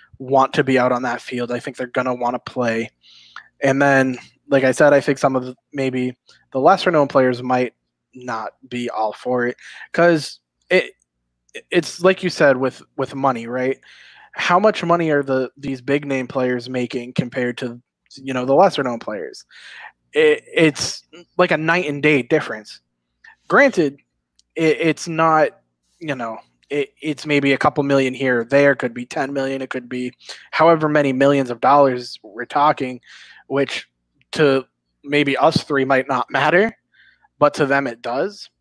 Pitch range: 125-145 Hz